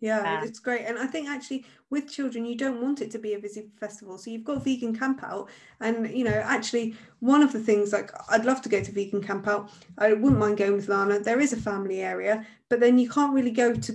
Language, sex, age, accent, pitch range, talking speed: English, female, 20-39, British, 205-245 Hz, 255 wpm